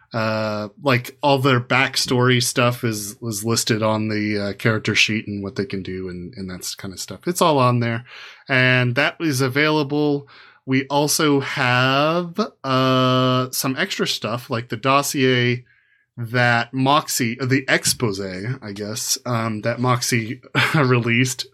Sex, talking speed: male, 150 wpm